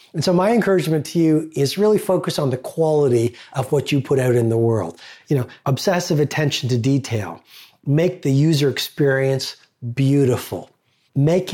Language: English